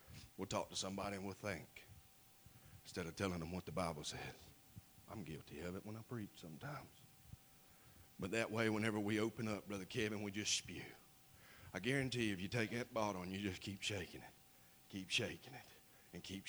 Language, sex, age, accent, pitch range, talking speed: English, male, 40-59, American, 110-175 Hz, 195 wpm